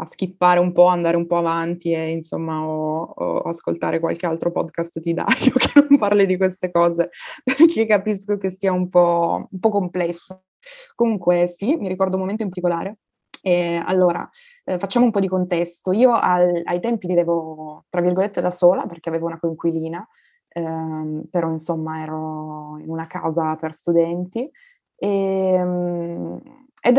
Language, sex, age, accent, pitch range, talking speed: Italian, female, 20-39, native, 170-200 Hz, 160 wpm